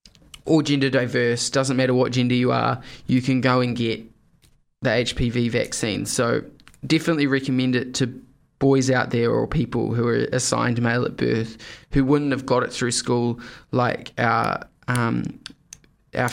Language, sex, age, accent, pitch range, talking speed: English, male, 20-39, Australian, 125-145 Hz, 160 wpm